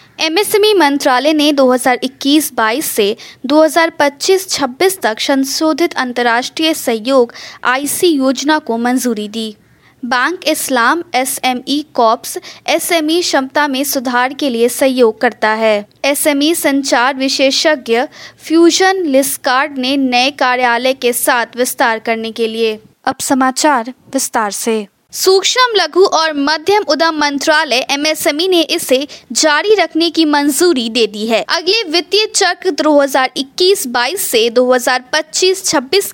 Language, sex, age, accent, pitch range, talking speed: Hindi, female, 20-39, native, 250-330 Hz, 115 wpm